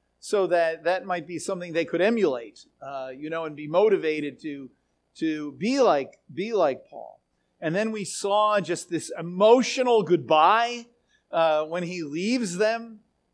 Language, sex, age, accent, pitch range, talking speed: English, male, 40-59, American, 155-220 Hz, 160 wpm